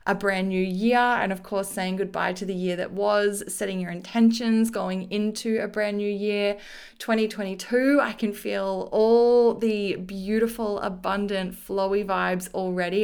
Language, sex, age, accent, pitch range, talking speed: English, female, 20-39, Australian, 195-225 Hz, 155 wpm